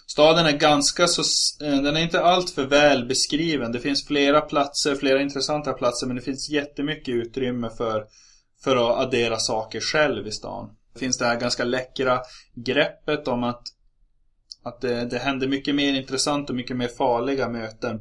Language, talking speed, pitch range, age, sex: Swedish, 175 wpm, 115-140 Hz, 20-39, male